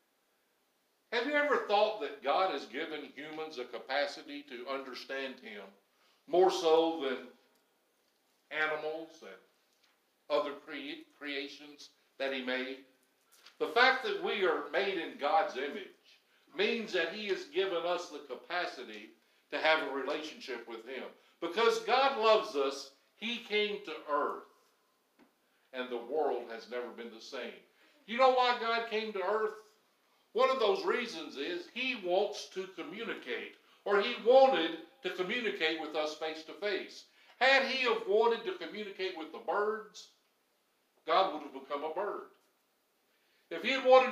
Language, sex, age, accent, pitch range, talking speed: English, male, 60-79, American, 150-230 Hz, 145 wpm